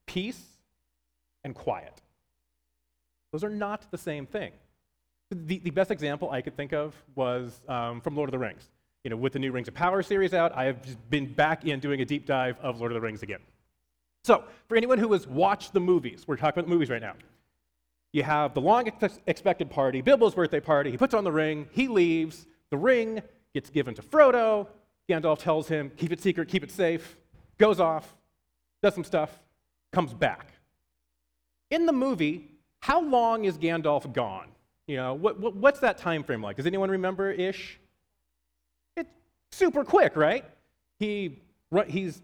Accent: American